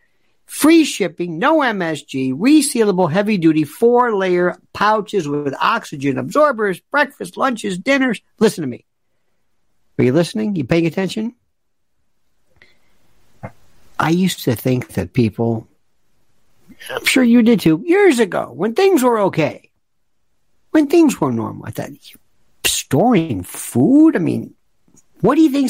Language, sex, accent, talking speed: English, male, American, 135 wpm